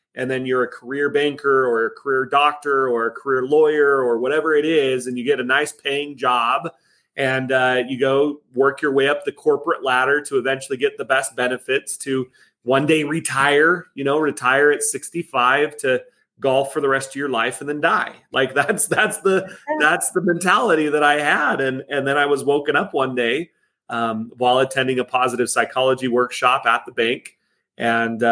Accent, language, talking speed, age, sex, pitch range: American, English, 195 wpm, 30-49, male, 125-150 Hz